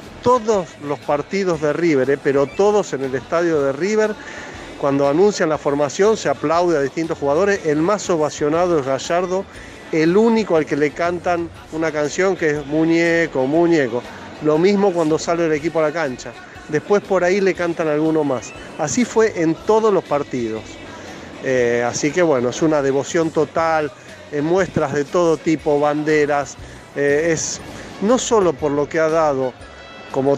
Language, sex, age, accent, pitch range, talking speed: English, male, 40-59, Argentinian, 145-180 Hz, 170 wpm